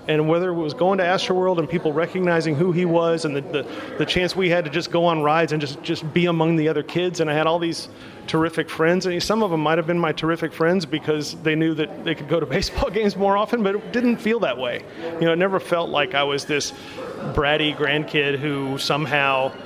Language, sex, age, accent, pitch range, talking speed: English, male, 40-59, American, 140-165 Hz, 255 wpm